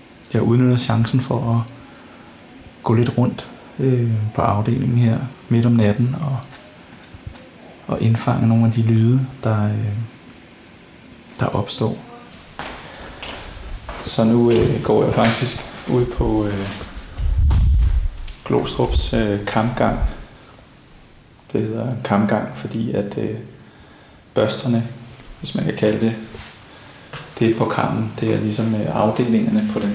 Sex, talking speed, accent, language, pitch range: male, 120 wpm, native, Danish, 105-120 Hz